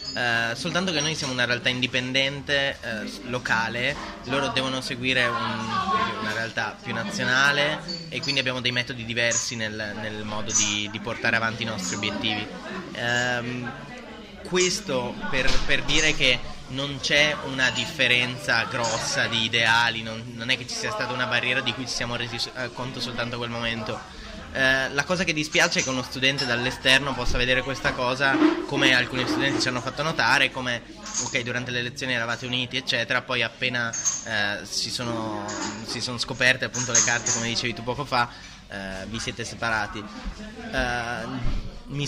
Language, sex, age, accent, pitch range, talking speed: Italian, male, 20-39, native, 115-135 Hz, 160 wpm